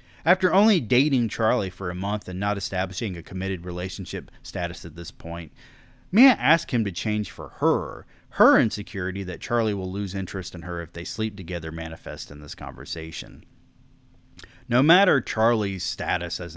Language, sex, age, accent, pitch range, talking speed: English, male, 30-49, American, 90-120 Hz, 165 wpm